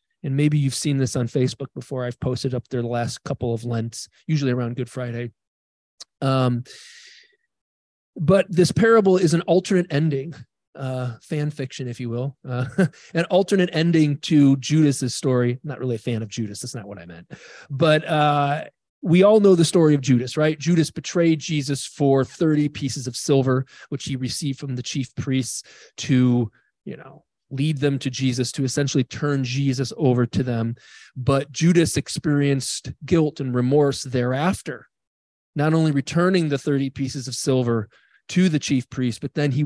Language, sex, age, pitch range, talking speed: English, male, 30-49, 125-155 Hz, 175 wpm